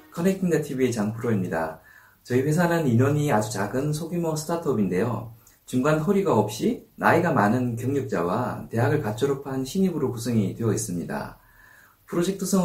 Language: Korean